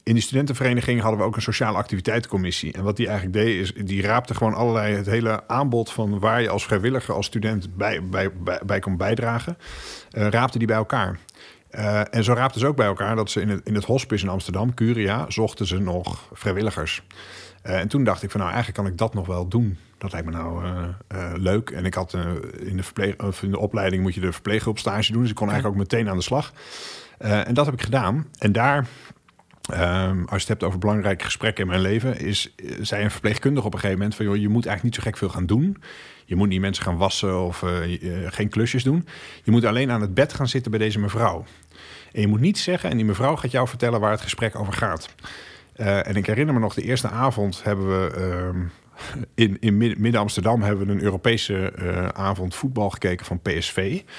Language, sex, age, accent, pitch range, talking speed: Dutch, male, 50-69, Dutch, 95-115 Hz, 235 wpm